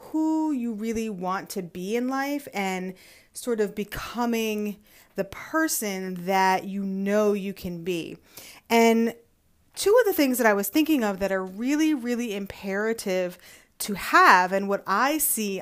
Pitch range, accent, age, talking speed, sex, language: 200-265 Hz, American, 30-49, 160 wpm, female, English